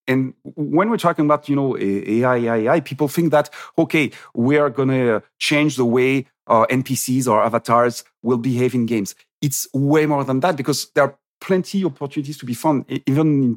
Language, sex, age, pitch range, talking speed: English, male, 40-59, 120-150 Hz, 195 wpm